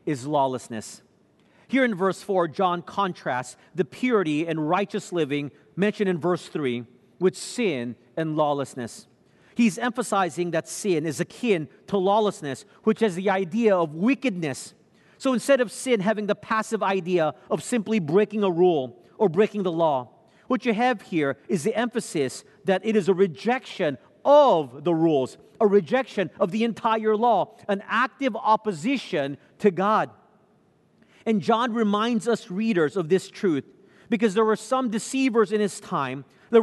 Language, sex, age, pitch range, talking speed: English, male, 40-59, 175-225 Hz, 155 wpm